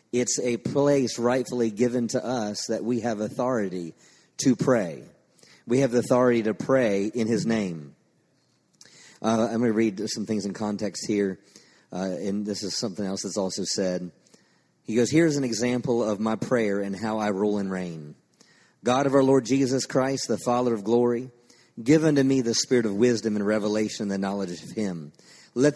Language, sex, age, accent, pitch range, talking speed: English, male, 40-59, American, 105-125 Hz, 185 wpm